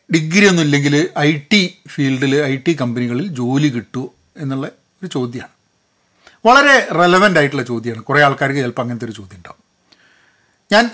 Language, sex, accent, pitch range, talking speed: Malayalam, male, native, 140-185 Hz, 130 wpm